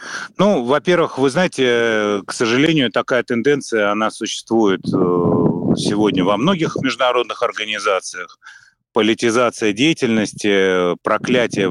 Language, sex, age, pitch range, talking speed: Russian, male, 30-49, 95-120 Hz, 90 wpm